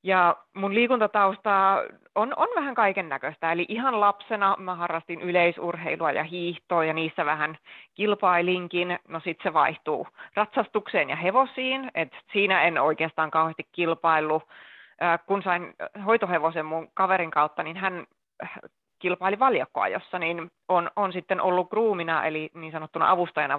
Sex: female